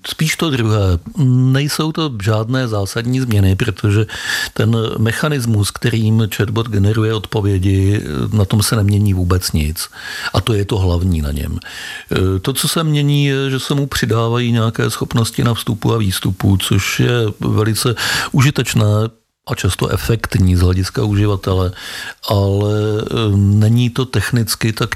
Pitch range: 100-115 Hz